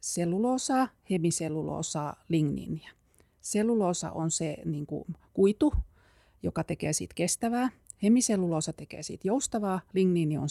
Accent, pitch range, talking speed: native, 165-210 Hz, 110 wpm